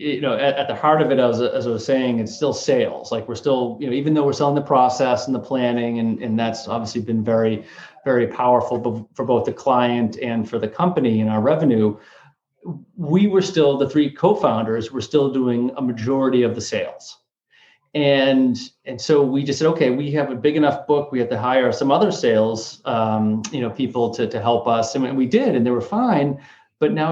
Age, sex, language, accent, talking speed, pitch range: 30-49, male, English, American, 220 wpm, 120-150 Hz